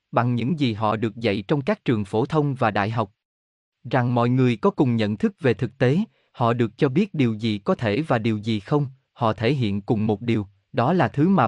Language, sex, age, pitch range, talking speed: Vietnamese, male, 20-39, 110-150 Hz, 240 wpm